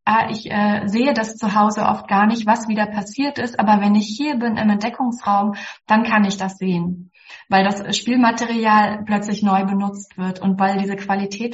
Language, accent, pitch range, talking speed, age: German, German, 200-215 Hz, 190 wpm, 20-39